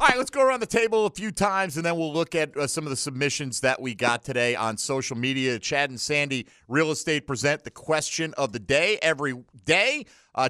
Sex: male